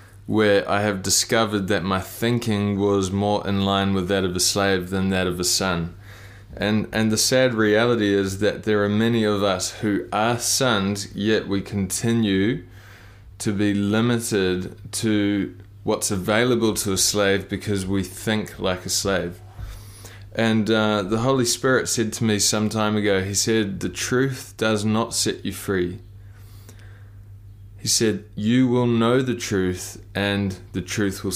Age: 20-39